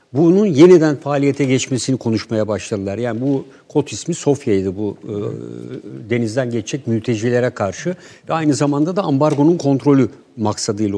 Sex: male